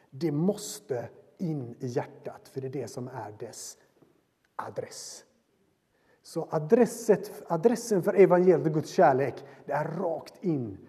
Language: Swedish